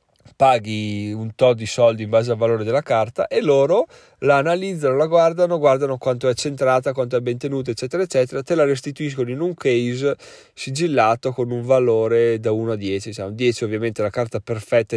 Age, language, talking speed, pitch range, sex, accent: 20-39, Italian, 195 wpm, 115-130 Hz, male, native